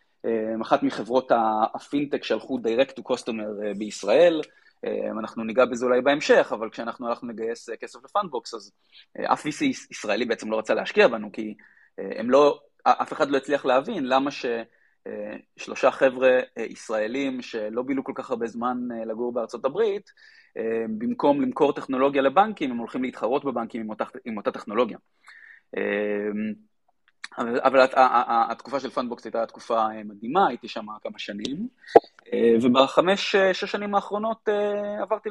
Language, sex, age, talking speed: Hebrew, male, 30-49, 135 wpm